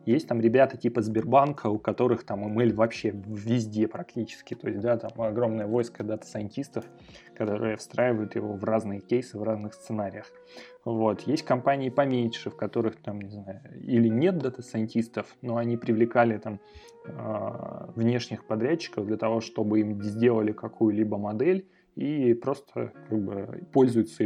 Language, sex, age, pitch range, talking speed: Russian, male, 20-39, 110-140 Hz, 140 wpm